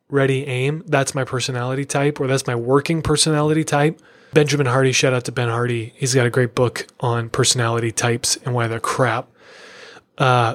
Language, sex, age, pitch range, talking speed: English, male, 30-49, 125-155 Hz, 180 wpm